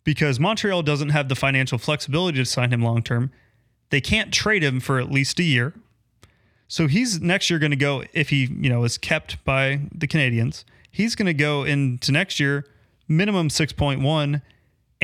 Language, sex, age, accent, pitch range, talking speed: English, male, 30-49, American, 125-155 Hz, 185 wpm